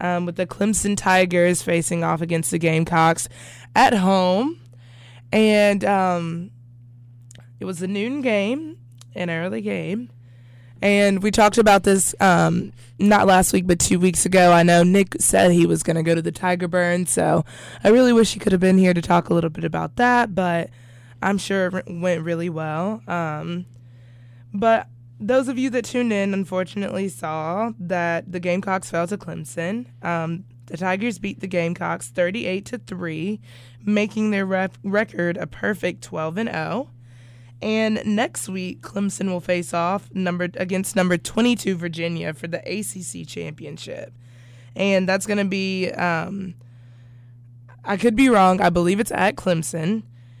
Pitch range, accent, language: 160-195 Hz, American, English